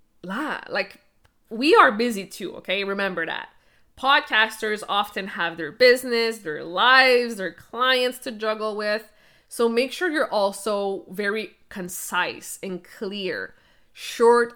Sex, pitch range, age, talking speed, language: female, 190-235 Hz, 20-39, 125 wpm, English